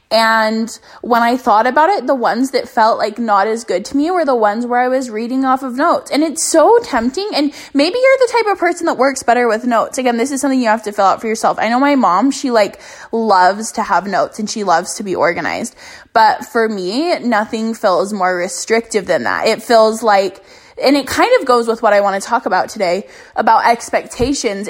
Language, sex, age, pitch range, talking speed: English, female, 10-29, 220-285 Hz, 235 wpm